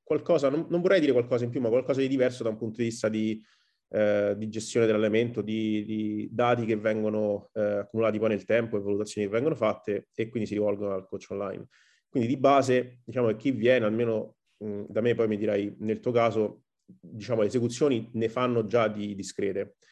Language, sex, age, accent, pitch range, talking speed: Italian, male, 30-49, native, 105-120 Hz, 205 wpm